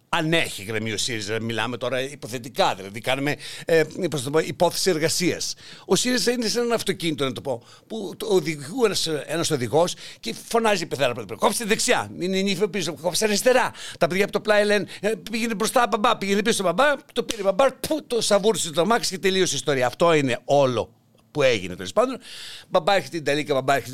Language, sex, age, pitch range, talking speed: Greek, male, 60-79, 140-205 Hz, 195 wpm